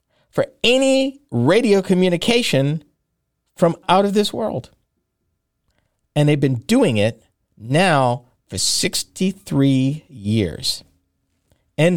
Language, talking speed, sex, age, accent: English, 95 wpm, male, 50-69, American